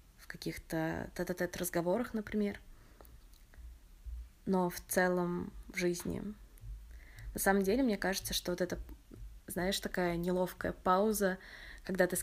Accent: native